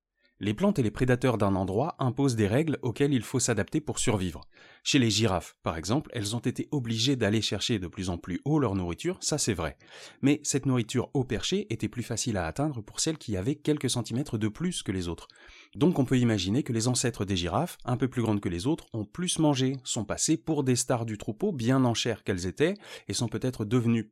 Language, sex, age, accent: French, male, 30-49, French